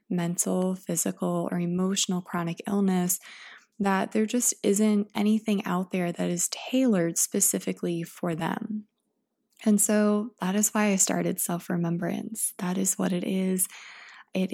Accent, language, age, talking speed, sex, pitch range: American, English, 20-39, 135 wpm, female, 180-215 Hz